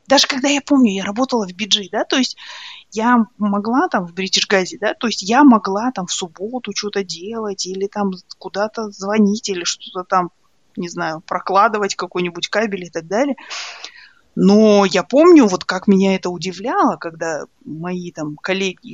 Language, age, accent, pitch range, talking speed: Russian, 30-49, native, 185-250 Hz, 170 wpm